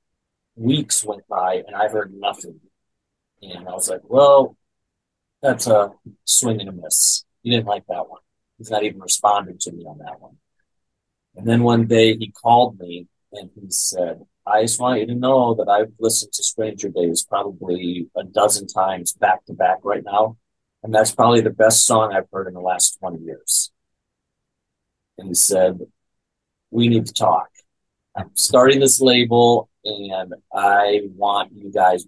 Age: 40-59